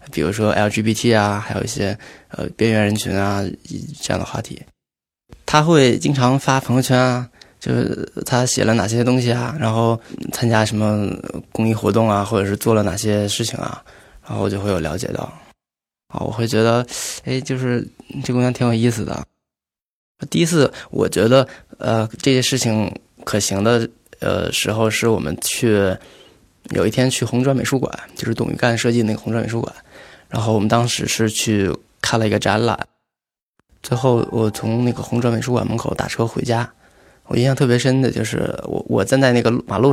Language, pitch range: Chinese, 105-125 Hz